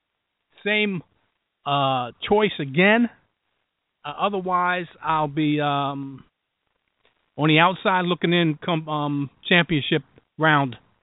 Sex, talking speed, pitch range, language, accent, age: male, 100 wpm, 140-190 Hz, English, American, 50-69